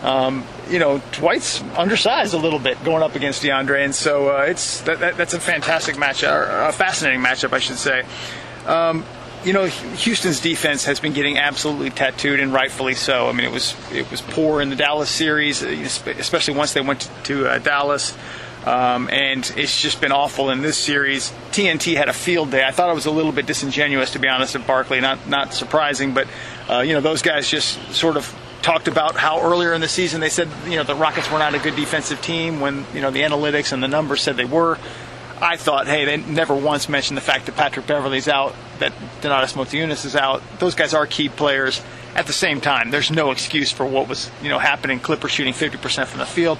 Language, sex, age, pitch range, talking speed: English, male, 30-49, 135-155 Hz, 220 wpm